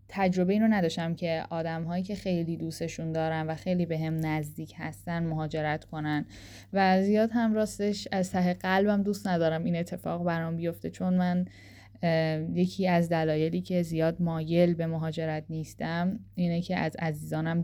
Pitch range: 160-180 Hz